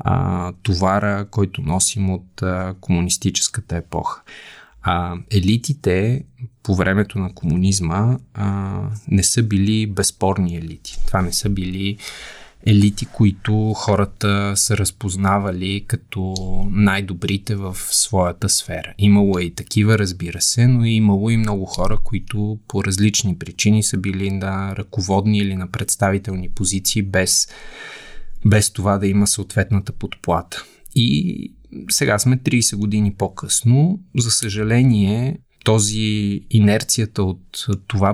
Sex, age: male, 20-39